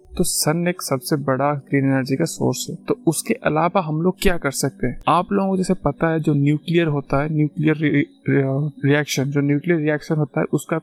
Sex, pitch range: male, 145-170 Hz